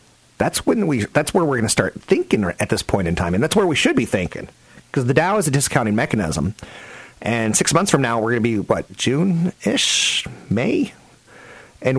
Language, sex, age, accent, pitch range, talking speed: English, male, 40-59, American, 110-175 Hz, 215 wpm